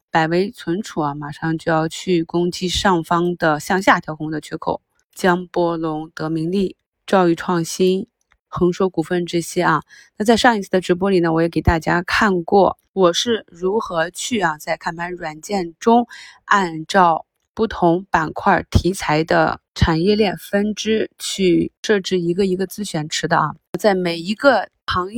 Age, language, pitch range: 20-39, Chinese, 165-200 Hz